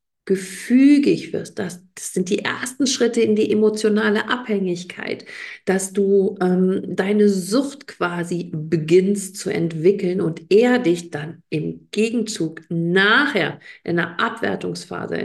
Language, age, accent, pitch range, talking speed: German, 50-69, German, 175-220 Hz, 120 wpm